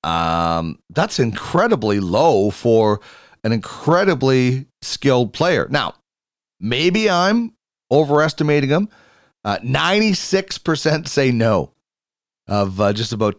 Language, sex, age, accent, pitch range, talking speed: English, male, 40-59, American, 120-165 Hz, 100 wpm